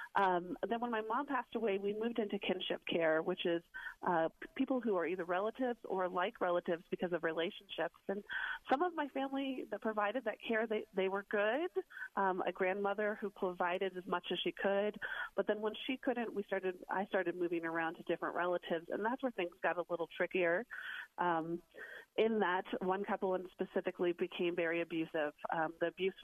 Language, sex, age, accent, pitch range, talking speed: English, female, 30-49, American, 175-210 Hz, 190 wpm